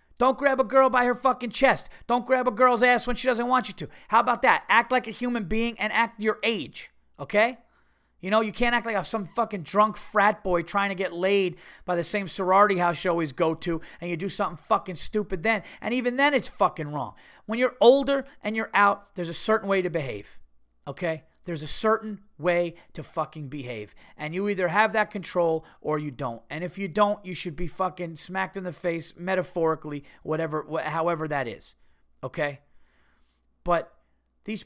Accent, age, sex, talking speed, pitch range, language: American, 30-49, male, 205 wpm, 160-220 Hz, English